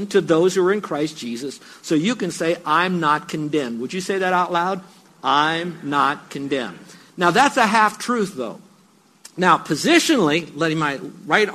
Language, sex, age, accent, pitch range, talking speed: English, male, 50-69, American, 150-195 Hz, 170 wpm